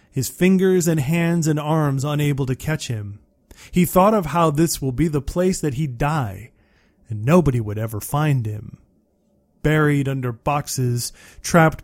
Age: 30-49